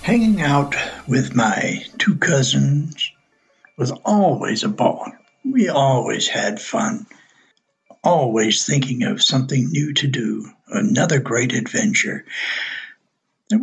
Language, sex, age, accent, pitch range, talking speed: English, male, 60-79, American, 125-195 Hz, 110 wpm